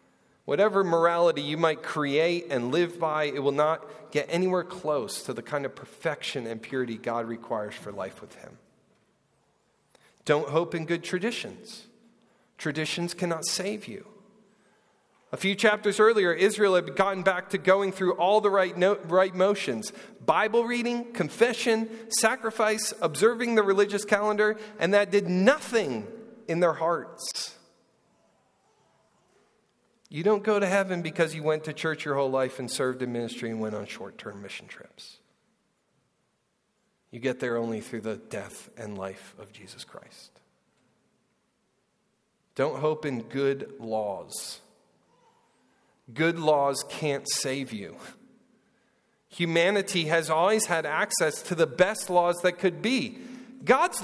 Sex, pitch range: male, 155-215 Hz